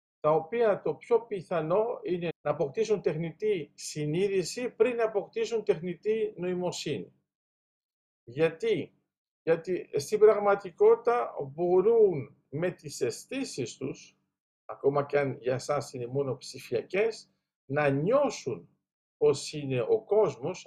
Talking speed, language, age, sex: 110 wpm, Greek, 50-69, male